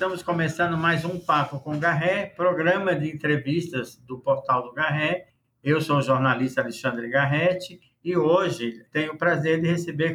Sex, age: male, 60-79